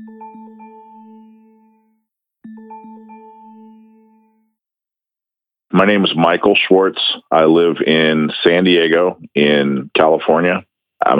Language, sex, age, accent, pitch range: English, male, 50-69, American, 75-110 Hz